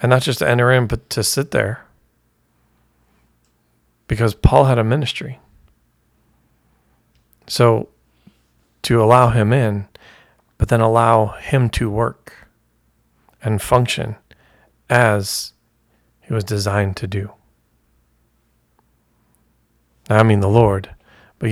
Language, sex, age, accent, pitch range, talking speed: English, male, 40-59, American, 105-120 Hz, 110 wpm